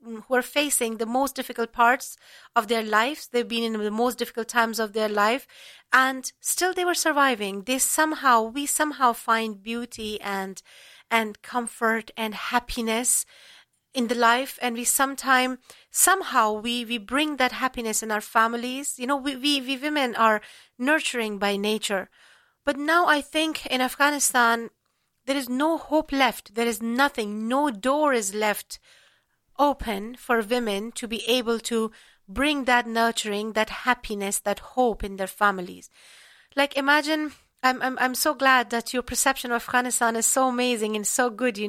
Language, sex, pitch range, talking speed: English, female, 220-265 Hz, 165 wpm